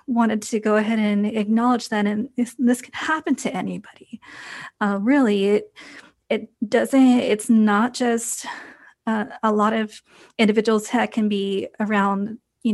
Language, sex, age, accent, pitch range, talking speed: English, female, 20-39, American, 215-255 Hz, 150 wpm